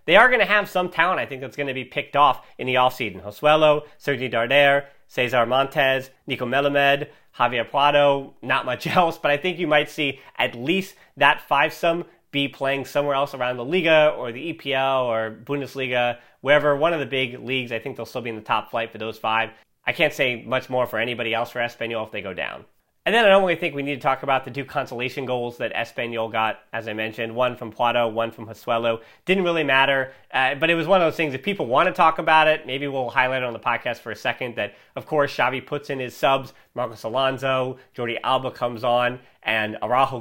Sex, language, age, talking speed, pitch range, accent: male, English, 30-49, 235 wpm, 120-145 Hz, American